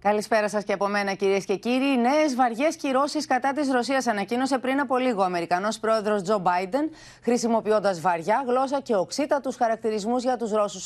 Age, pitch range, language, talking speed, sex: 30-49, 190-260 Hz, Greek, 175 wpm, female